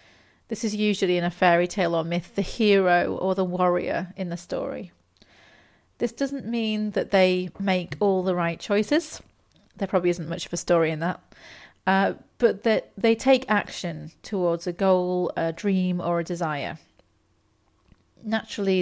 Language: English